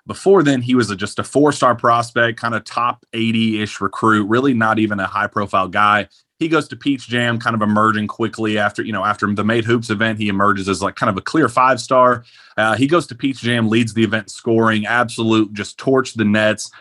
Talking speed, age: 210 wpm, 30-49